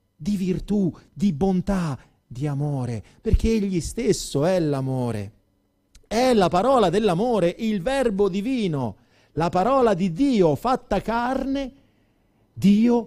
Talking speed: 115 wpm